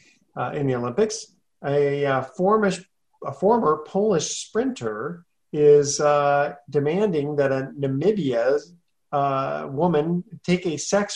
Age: 40-59